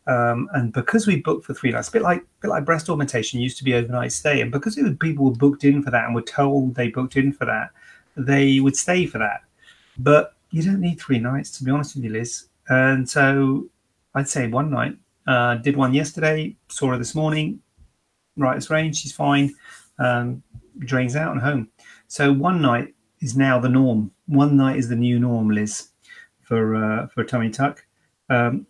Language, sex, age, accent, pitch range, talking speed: English, male, 40-59, British, 120-145 Hz, 210 wpm